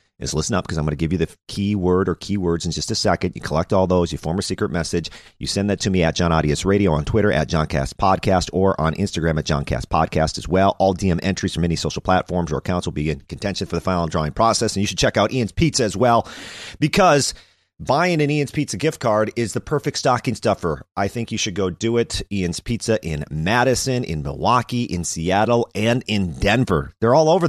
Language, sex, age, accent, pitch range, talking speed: English, male, 40-59, American, 85-110 Hz, 235 wpm